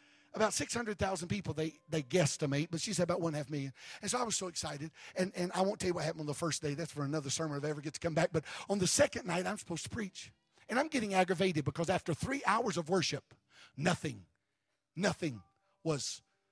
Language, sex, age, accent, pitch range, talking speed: English, male, 50-69, American, 160-210 Hz, 240 wpm